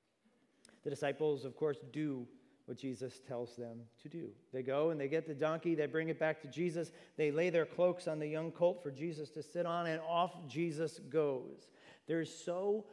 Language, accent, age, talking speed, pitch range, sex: English, American, 40-59, 205 wpm, 140-175 Hz, male